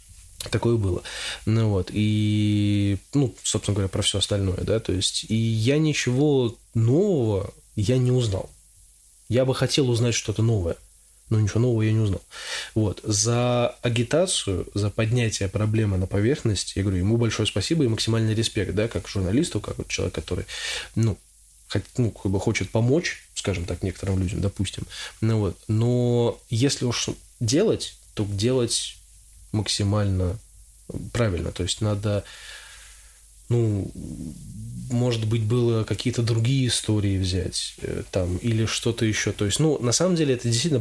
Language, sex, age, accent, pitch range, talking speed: Russian, male, 20-39, native, 95-120 Hz, 145 wpm